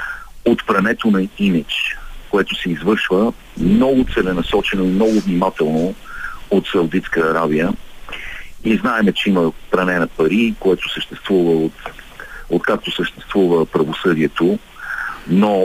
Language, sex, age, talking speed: Bulgarian, male, 50-69, 115 wpm